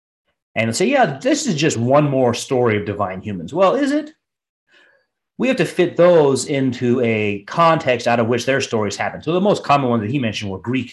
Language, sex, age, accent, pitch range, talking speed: English, male, 30-49, American, 105-135 Hz, 215 wpm